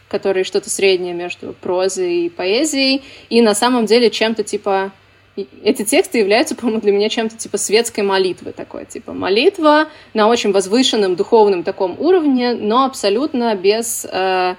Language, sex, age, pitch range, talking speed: Russian, female, 20-39, 195-235 Hz, 150 wpm